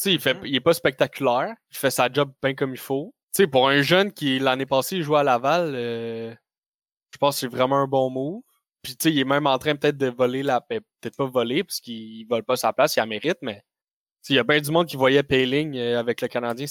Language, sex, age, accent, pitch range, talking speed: French, male, 10-29, Canadian, 125-150 Hz, 255 wpm